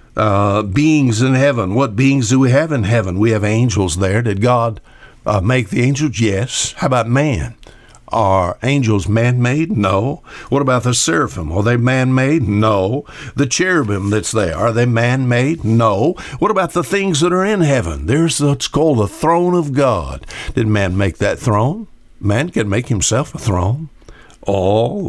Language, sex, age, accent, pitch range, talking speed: English, male, 60-79, American, 110-130 Hz, 170 wpm